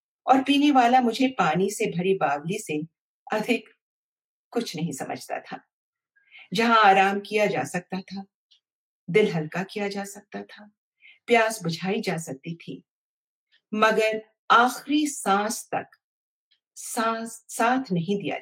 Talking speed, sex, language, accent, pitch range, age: 125 wpm, female, Hindi, native, 170-245 Hz, 50-69